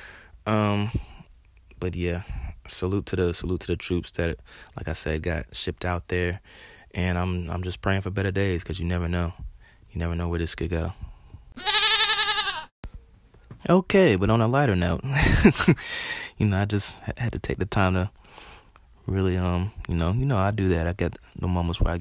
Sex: male